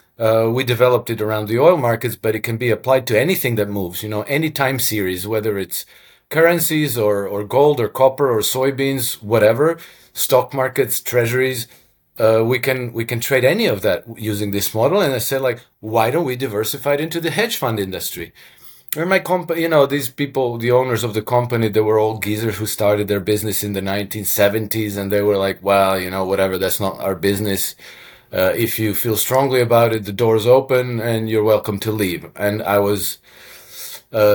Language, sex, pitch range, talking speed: English, male, 105-125 Hz, 205 wpm